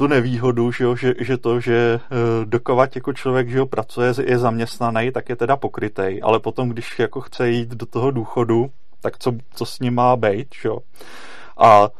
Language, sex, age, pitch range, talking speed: Czech, male, 30-49, 115-130 Hz, 190 wpm